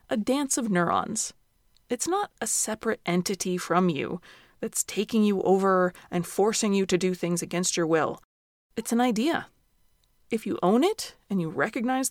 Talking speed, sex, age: 170 wpm, female, 30-49